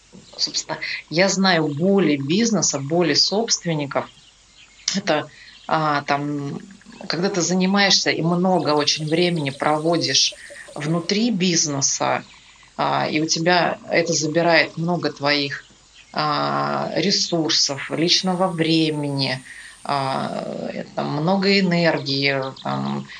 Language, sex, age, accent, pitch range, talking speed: Russian, female, 30-49, native, 150-180 Hz, 95 wpm